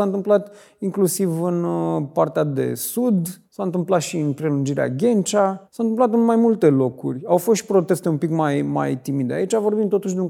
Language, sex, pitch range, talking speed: Romanian, male, 145-195 Hz, 190 wpm